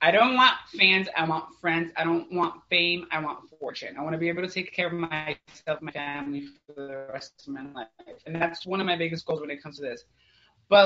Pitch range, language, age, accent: 170-225 Hz, English, 20-39, American